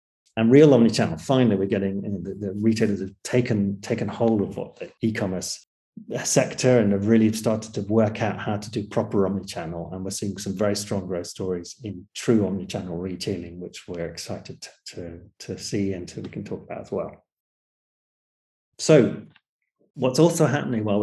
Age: 30-49